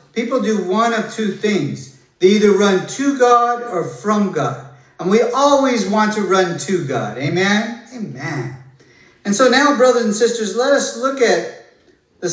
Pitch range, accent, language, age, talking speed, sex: 180-240 Hz, American, English, 50-69, 170 wpm, male